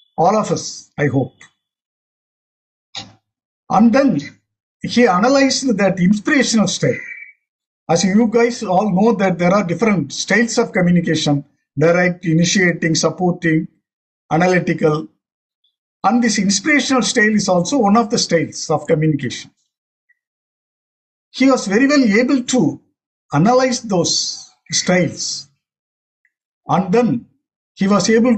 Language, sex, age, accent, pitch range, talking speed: English, male, 50-69, Indian, 155-240 Hz, 115 wpm